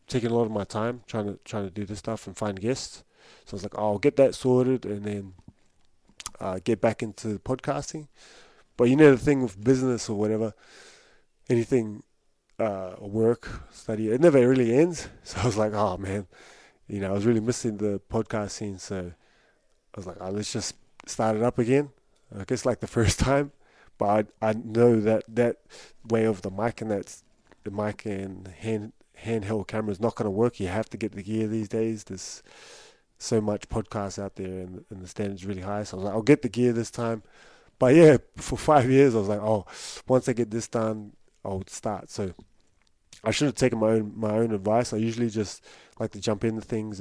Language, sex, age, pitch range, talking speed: English, male, 20-39, 100-120 Hz, 215 wpm